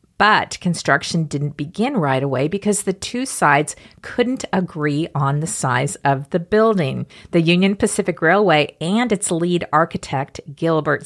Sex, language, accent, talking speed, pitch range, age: female, English, American, 145 wpm, 145-190 Hz, 50-69